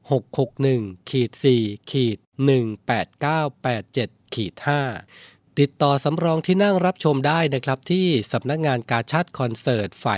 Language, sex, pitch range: Thai, male, 115-140 Hz